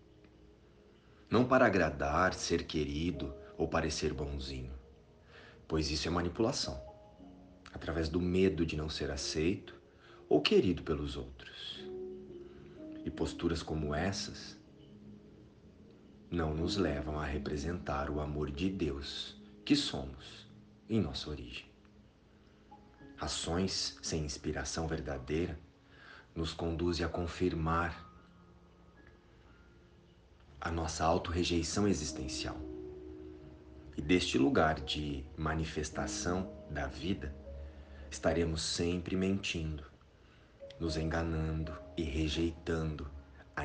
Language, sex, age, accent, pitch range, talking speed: Portuguese, male, 40-59, Brazilian, 75-95 Hz, 95 wpm